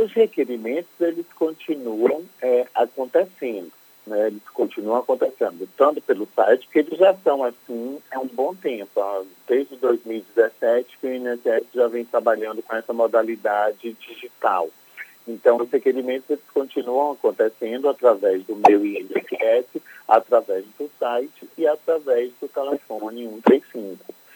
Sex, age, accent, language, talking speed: male, 50-69, Brazilian, Portuguese, 130 wpm